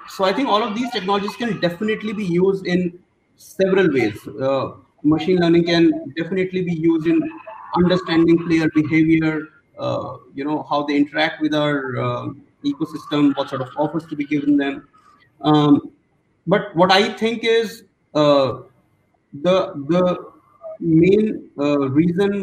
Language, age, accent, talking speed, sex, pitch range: English, 30-49, Indian, 145 wpm, male, 145-185 Hz